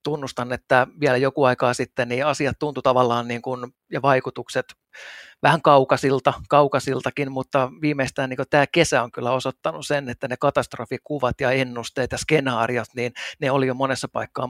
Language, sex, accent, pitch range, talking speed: Finnish, male, native, 125-145 Hz, 155 wpm